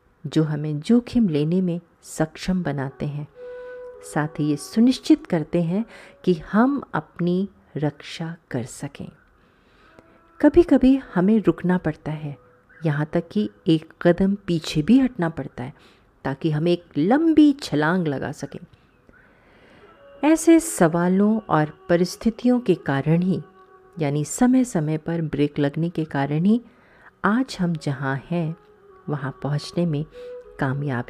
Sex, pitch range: female, 150-215 Hz